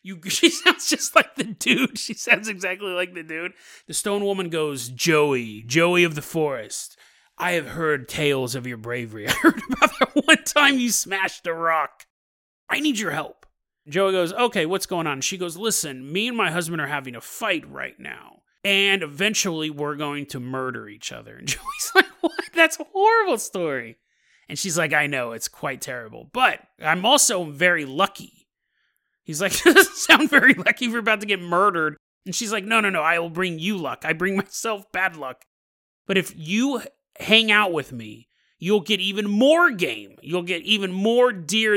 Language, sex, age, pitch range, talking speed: English, male, 30-49, 155-225 Hz, 195 wpm